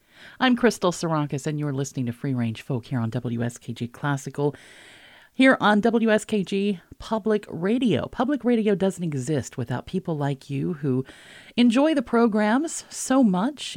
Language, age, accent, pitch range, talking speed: English, 40-59, American, 135-195 Hz, 145 wpm